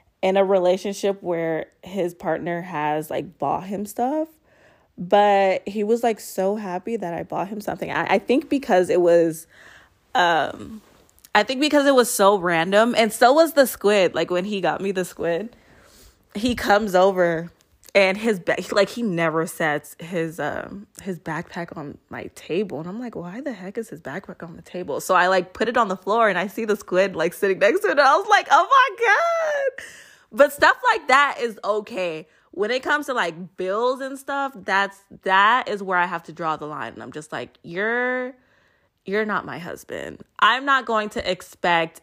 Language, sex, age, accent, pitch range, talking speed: English, female, 20-39, American, 170-225 Hz, 200 wpm